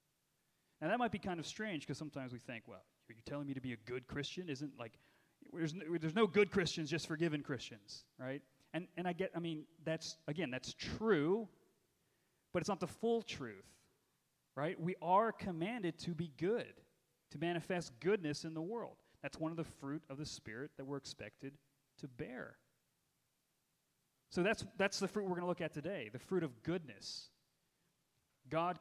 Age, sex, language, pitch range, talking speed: 30-49, male, English, 130-170 Hz, 190 wpm